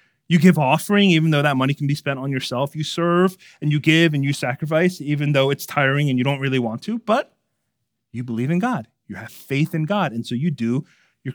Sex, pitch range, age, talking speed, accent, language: male, 125-185 Hz, 30-49, 240 wpm, American, English